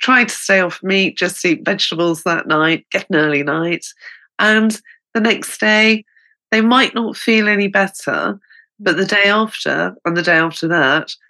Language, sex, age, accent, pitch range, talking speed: English, female, 40-59, British, 165-215 Hz, 175 wpm